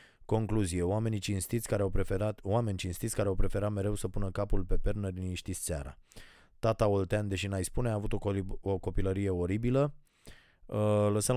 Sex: male